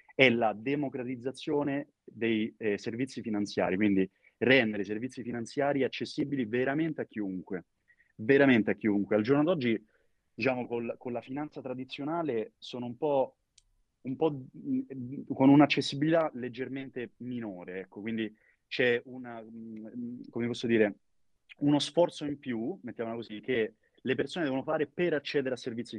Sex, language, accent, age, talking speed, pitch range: male, Italian, native, 30-49, 135 wpm, 110-135 Hz